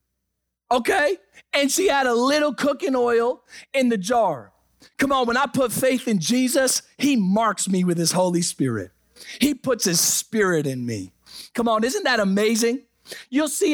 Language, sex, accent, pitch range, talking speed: English, male, American, 160-245 Hz, 170 wpm